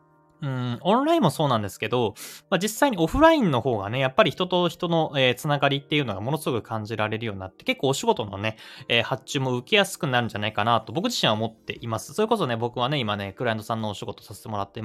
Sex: male